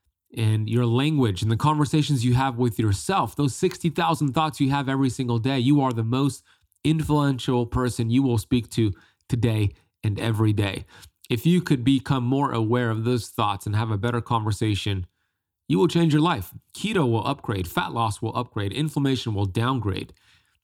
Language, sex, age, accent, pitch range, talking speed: English, male, 30-49, American, 105-135 Hz, 175 wpm